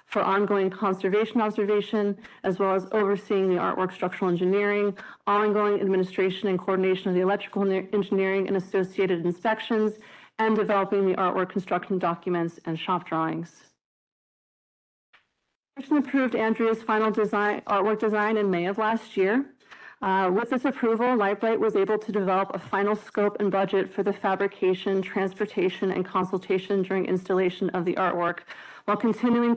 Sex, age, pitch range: female, 30-49, 185-215 Hz